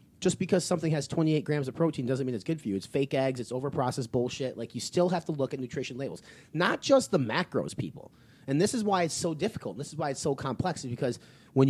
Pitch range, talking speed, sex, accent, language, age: 120-145 Hz, 255 wpm, male, American, English, 30-49